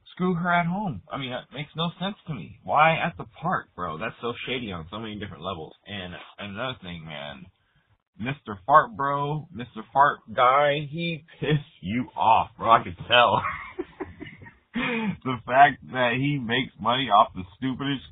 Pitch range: 100-140 Hz